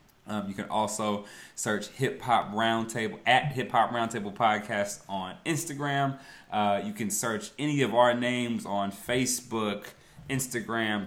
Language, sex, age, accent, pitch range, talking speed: English, male, 20-39, American, 100-125 Hz, 140 wpm